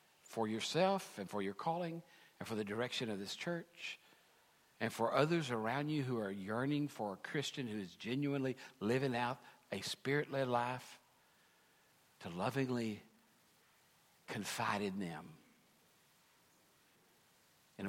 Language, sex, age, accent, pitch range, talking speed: English, male, 60-79, American, 110-145 Hz, 130 wpm